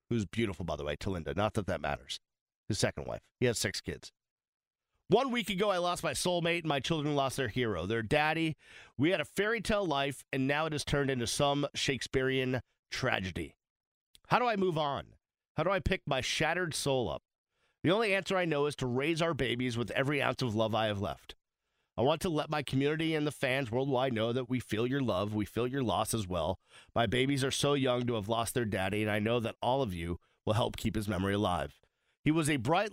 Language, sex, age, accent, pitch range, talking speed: English, male, 40-59, American, 110-145 Hz, 235 wpm